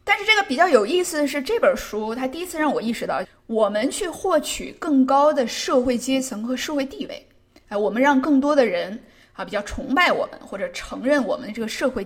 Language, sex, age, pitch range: Chinese, female, 20-39, 230-300 Hz